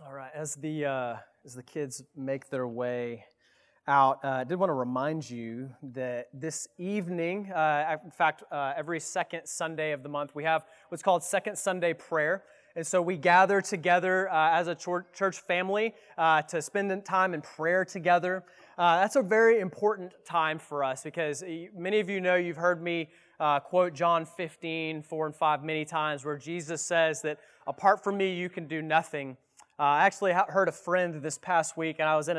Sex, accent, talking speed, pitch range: male, American, 195 wpm, 155-190 Hz